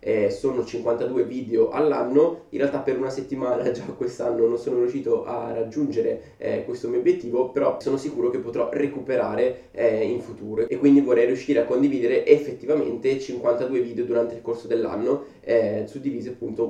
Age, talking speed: 20-39, 160 wpm